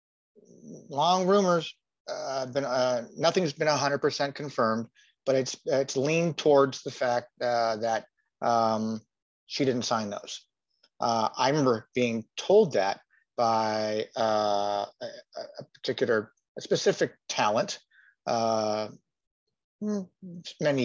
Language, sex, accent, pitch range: English, male, American, 110-130 Hz